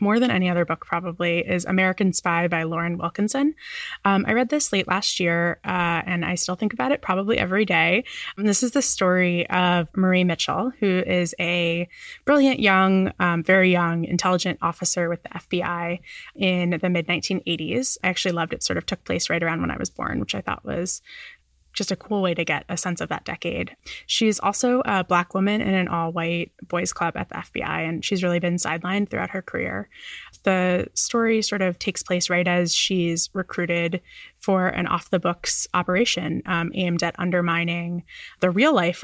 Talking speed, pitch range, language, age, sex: 190 wpm, 170-200 Hz, English, 20-39, female